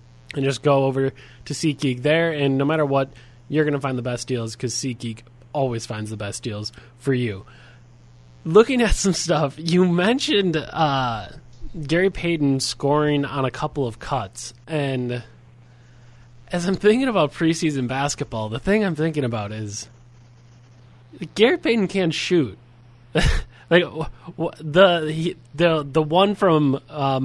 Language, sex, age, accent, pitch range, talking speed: English, male, 20-39, American, 125-160 Hz, 155 wpm